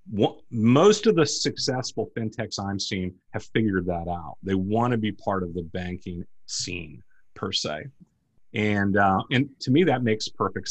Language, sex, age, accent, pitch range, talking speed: English, male, 40-59, American, 95-130 Hz, 170 wpm